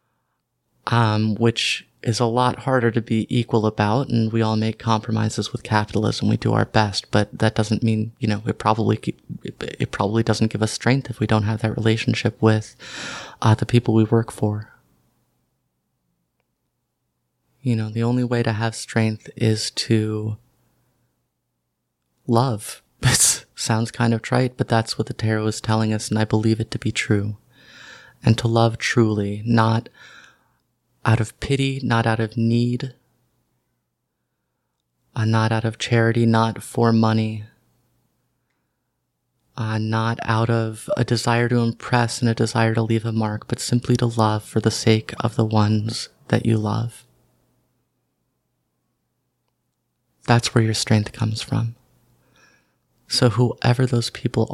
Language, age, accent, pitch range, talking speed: English, 20-39, American, 110-120 Hz, 150 wpm